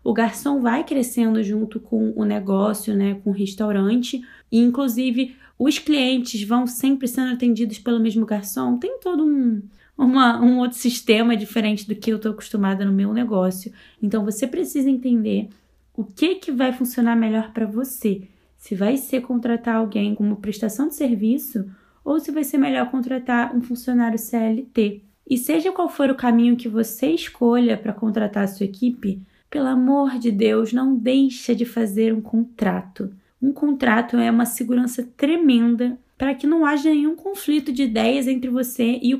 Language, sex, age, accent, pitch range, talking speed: Portuguese, female, 10-29, Brazilian, 220-265 Hz, 170 wpm